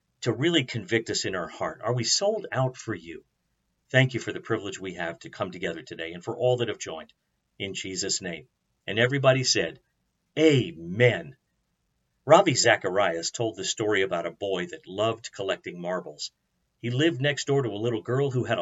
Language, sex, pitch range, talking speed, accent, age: English, male, 110-140 Hz, 190 wpm, American, 50-69